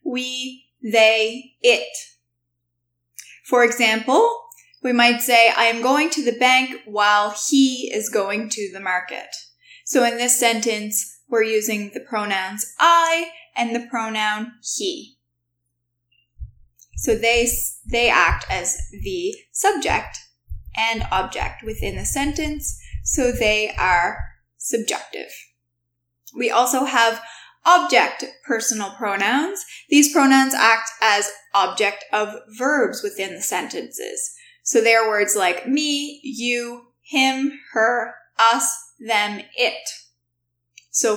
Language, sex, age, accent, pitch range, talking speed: English, female, 10-29, American, 205-270 Hz, 115 wpm